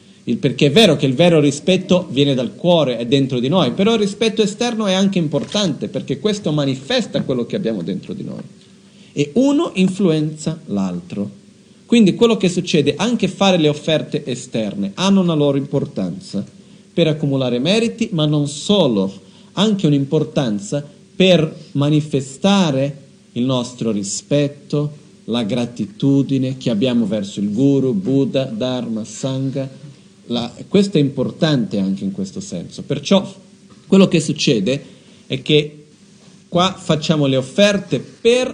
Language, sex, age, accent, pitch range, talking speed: Italian, male, 40-59, native, 140-195 Hz, 140 wpm